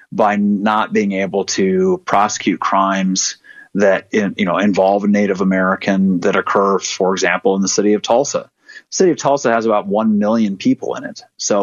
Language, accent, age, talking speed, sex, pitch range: English, American, 30-49, 185 wpm, male, 95-110 Hz